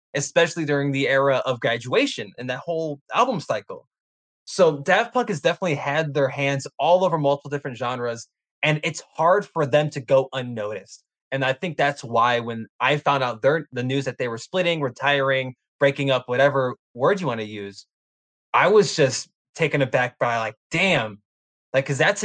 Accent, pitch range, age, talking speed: American, 130-160 Hz, 20-39, 180 wpm